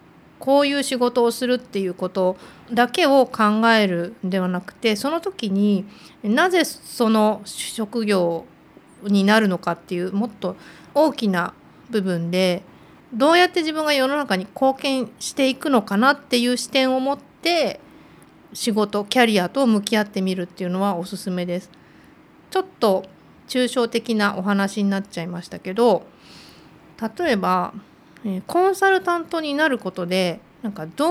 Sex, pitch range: female, 190-275 Hz